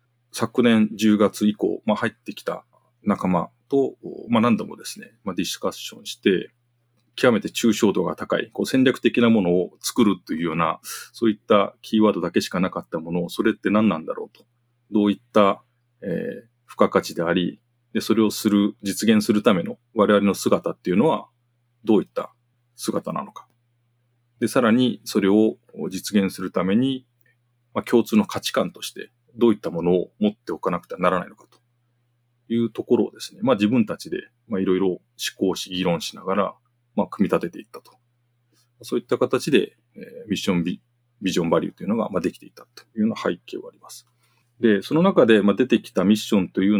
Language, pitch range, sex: Japanese, 105-125 Hz, male